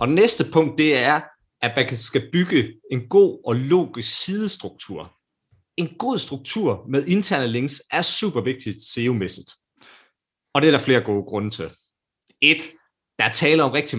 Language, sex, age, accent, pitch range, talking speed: Danish, male, 30-49, native, 115-150 Hz, 165 wpm